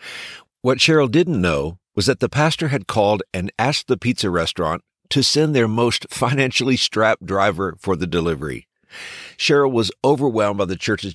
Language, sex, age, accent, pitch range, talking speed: English, male, 50-69, American, 90-130 Hz, 165 wpm